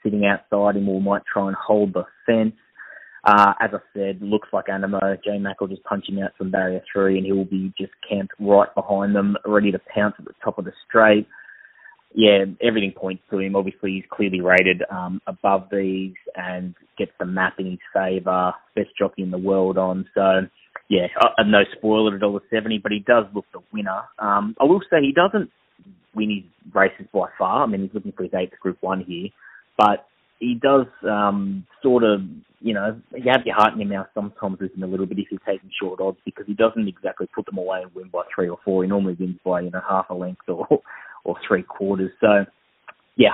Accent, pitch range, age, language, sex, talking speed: Australian, 95-105 Hz, 20-39, English, male, 220 wpm